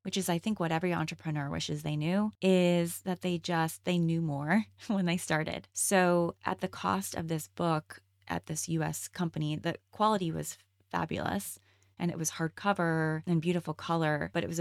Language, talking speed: English, 185 wpm